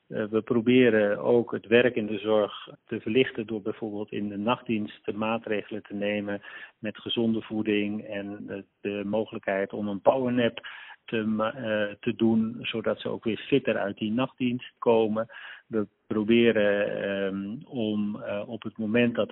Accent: Dutch